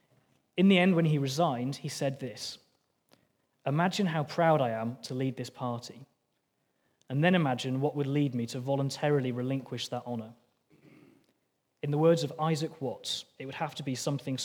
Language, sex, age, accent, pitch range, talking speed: English, male, 20-39, British, 125-150 Hz, 175 wpm